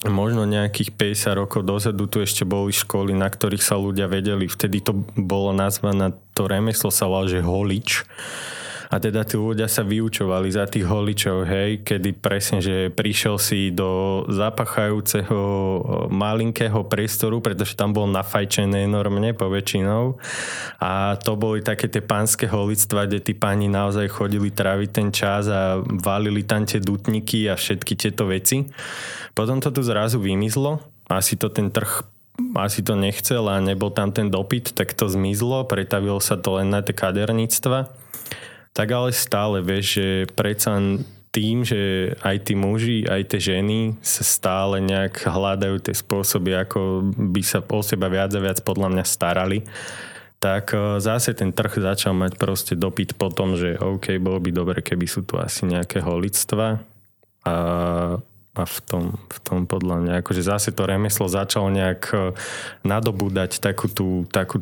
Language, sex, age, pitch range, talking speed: Slovak, male, 20-39, 95-110 Hz, 160 wpm